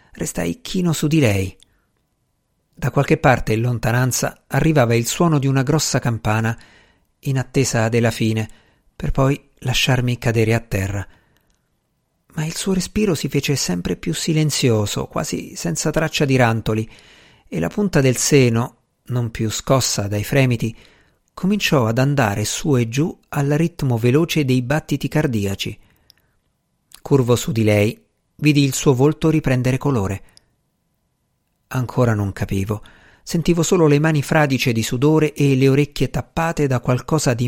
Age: 50-69